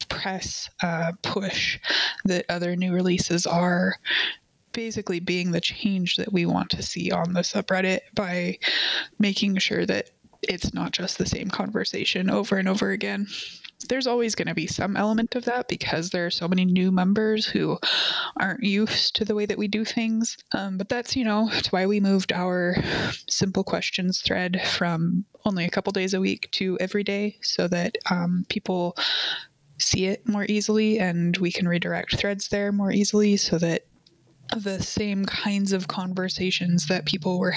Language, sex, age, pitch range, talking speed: English, female, 20-39, 180-210 Hz, 175 wpm